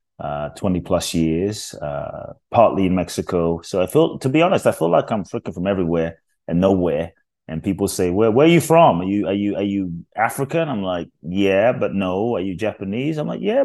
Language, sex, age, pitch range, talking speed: English, male, 30-49, 85-110 Hz, 215 wpm